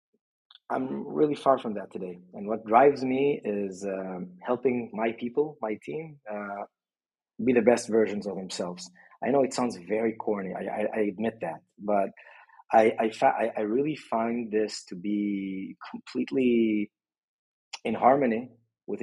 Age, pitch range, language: 30-49, 105-125 Hz, English